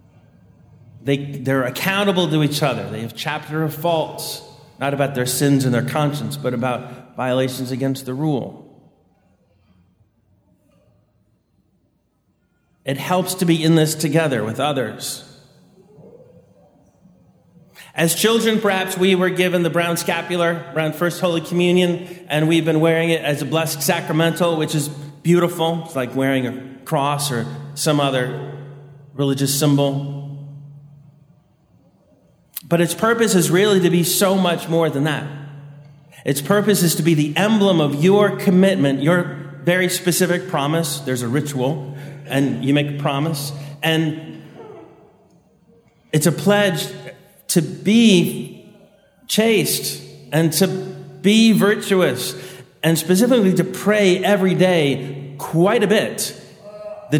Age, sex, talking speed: 30-49, male, 130 wpm